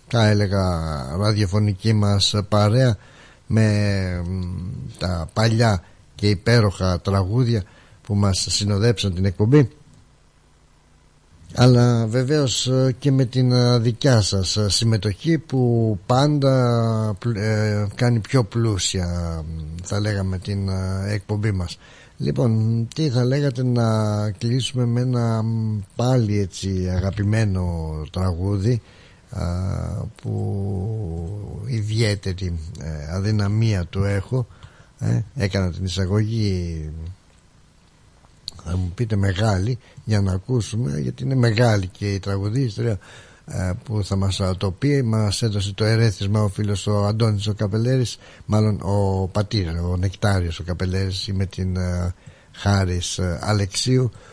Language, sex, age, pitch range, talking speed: Greek, male, 60-79, 95-115 Hz, 105 wpm